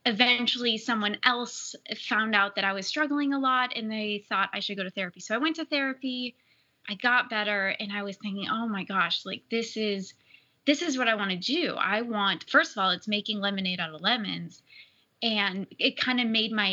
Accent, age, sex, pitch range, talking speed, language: American, 20-39, female, 195-250 Hz, 220 wpm, English